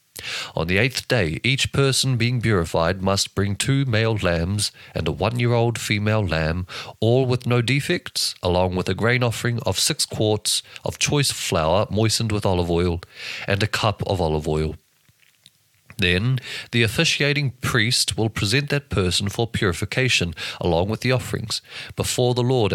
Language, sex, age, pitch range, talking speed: English, male, 40-59, 95-125 Hz, 160 wpm